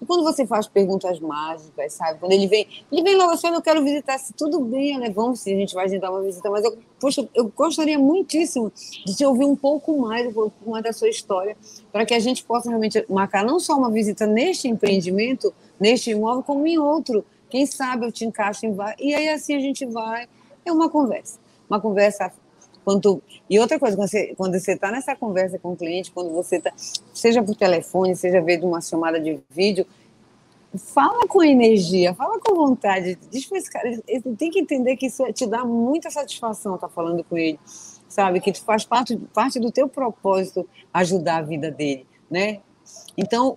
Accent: Brazilian